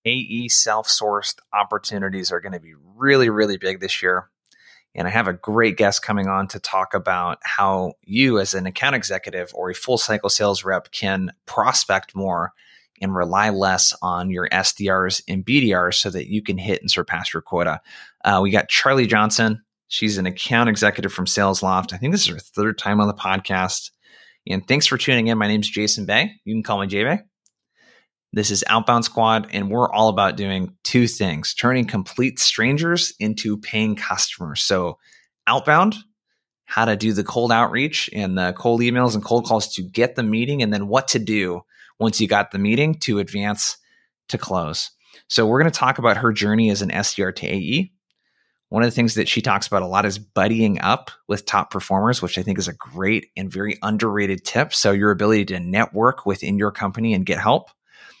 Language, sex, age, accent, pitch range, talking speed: English, male, 20-39, American, 95-115 Hz, 200 wpm